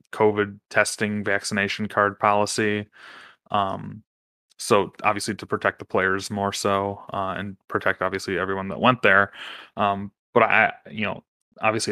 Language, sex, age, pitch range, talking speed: English, male, 20-39, 95-105 Hz, 140 wpm